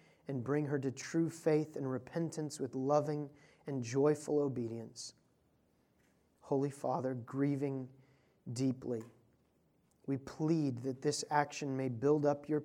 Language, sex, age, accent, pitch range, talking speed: English, male, 30-49, American, 115-145 Hz, 125 wpm